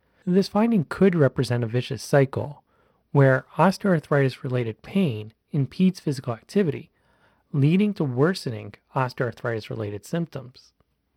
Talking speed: 95 wpm